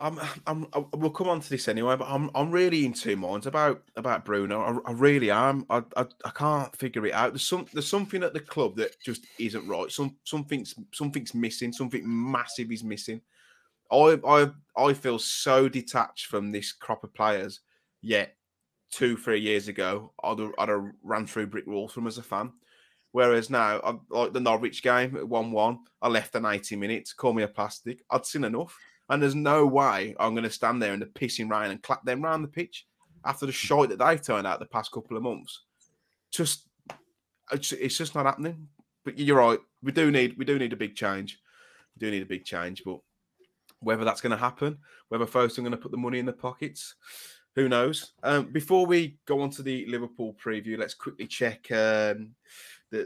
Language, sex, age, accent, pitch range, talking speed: English, male, 20-39, British, 110-145 Hz, 210 wpm